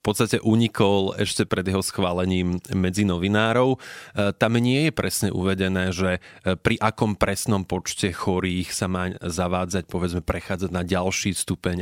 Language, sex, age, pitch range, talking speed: Slovak, male, 20-39, 90-110 Hz, 140 wpm